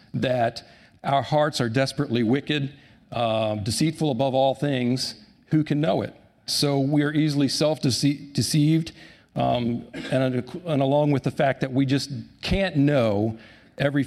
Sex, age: male, 50-69